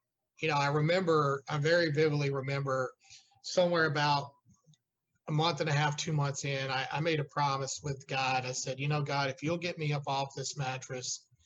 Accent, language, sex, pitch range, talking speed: American, English, male, 130-155 Hz, 200 wpm